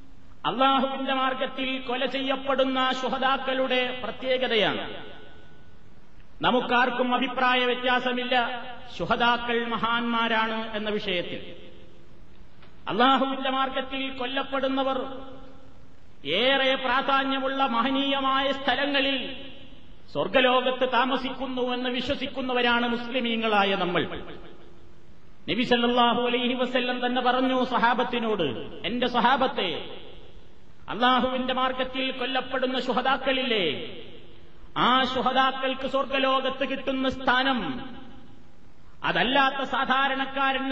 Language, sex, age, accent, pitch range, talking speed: Malayalam, male, 30-49, native, 245-270 Hz, 60 wpm